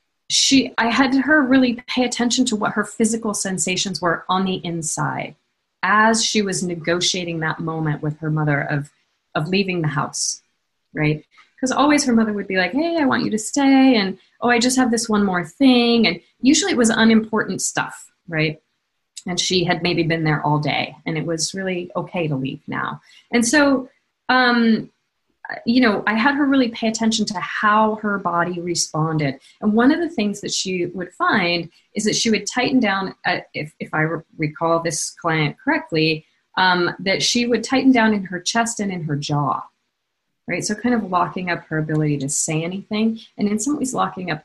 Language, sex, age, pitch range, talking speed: English, female, 30-49, 165-230 Hz, 195 wpm